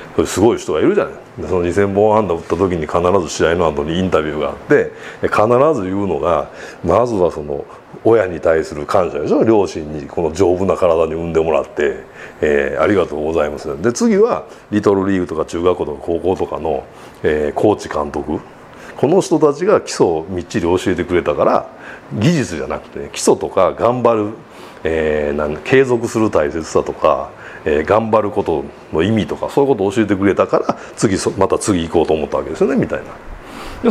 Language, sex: Japanese, male